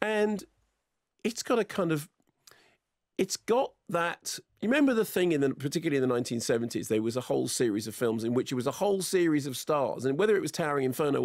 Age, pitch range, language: 40-59, 125-165 Hz, English